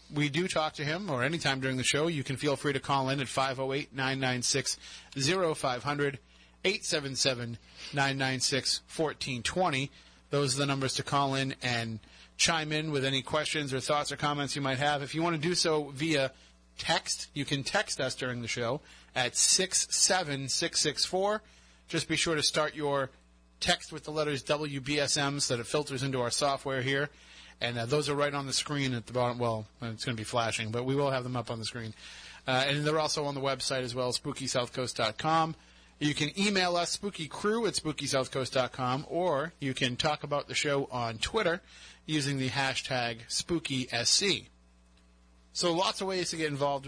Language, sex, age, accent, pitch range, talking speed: English, male, 30-49, American, 125-150 Hz, 180 wpm